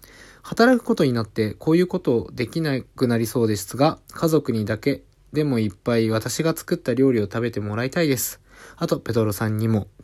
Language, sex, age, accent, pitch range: Japanese, male, 20-39, native, 105-145 Hz